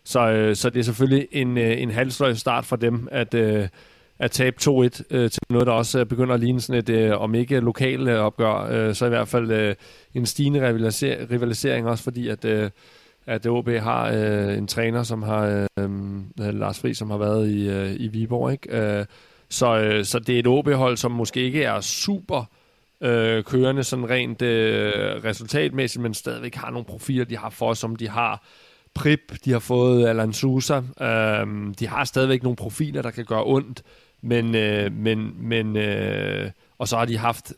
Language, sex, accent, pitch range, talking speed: Danish, male, native, 115-130 Hz, 170 wpm